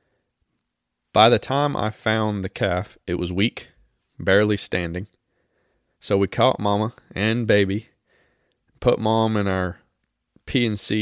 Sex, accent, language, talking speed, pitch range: male, American, English, 135 wpm, 95-115 Hz